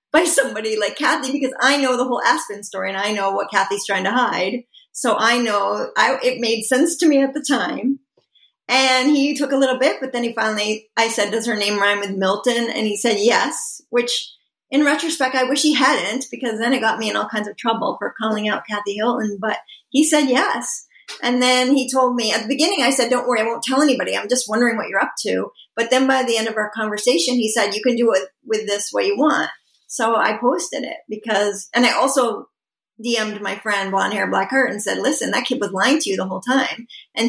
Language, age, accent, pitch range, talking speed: English, 40-59, American, 215-270 Hz, 240 wpm